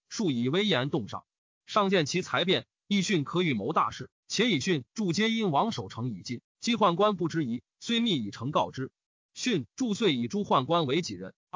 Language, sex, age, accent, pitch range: Chinese, male, 30-49, native, 145-215 Hz